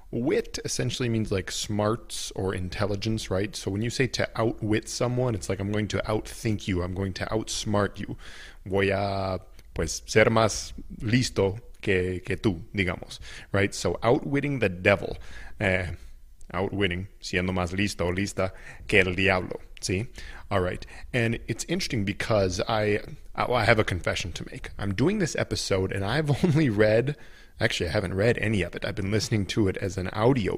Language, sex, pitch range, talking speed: English, male, 95-115 Hz, 175 wpm